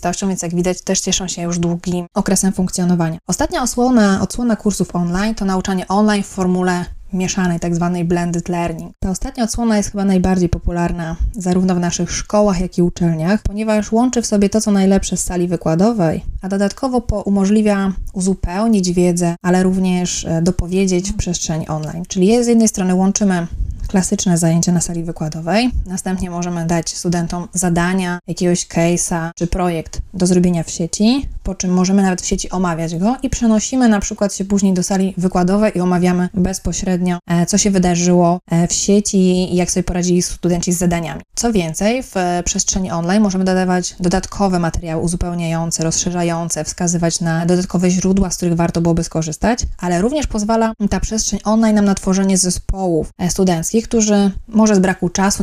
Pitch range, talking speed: 175-200 Hz, 160 wpm